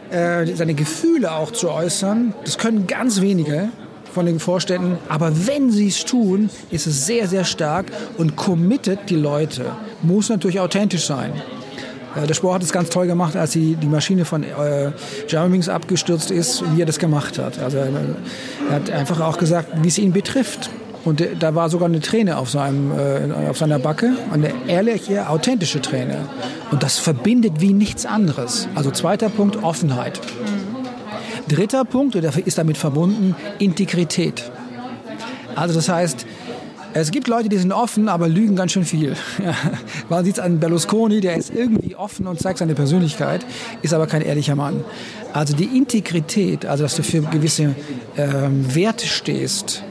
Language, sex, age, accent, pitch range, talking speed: German, male, 40-59, German, 155-205 Hz, 160 wpm